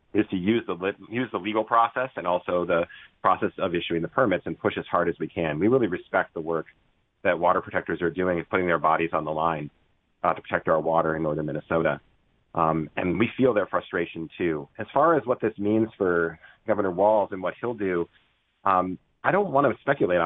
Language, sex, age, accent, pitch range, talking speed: English, male, 40-59, American, 90-120 Hz, 220 wpm